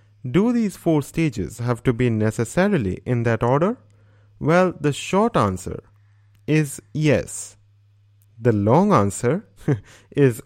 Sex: male